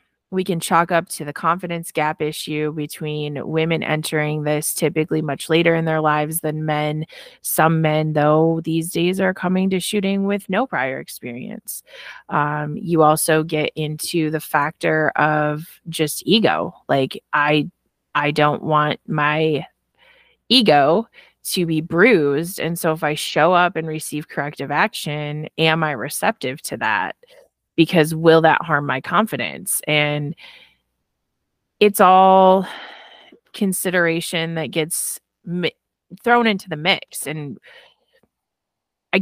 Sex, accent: female, American